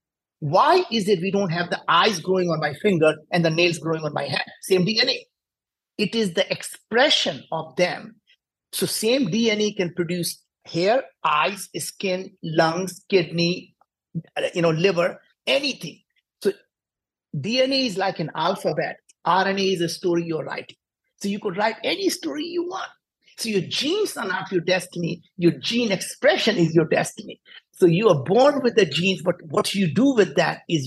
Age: 50-69